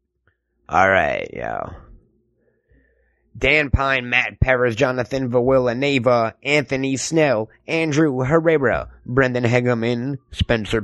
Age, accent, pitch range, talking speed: 20-39, American, 110-140 Hz, 95 wpm